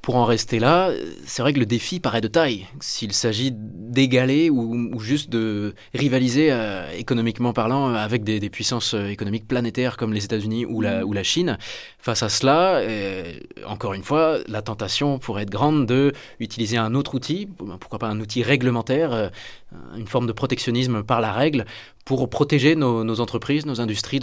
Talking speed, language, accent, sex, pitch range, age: 180 wpm, French, French, male, 110-135 Hz, 20-39